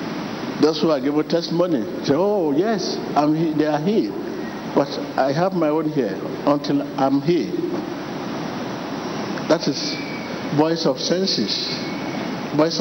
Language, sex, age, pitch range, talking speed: English, male, 60-79, 145-235 Hz, 135 wpm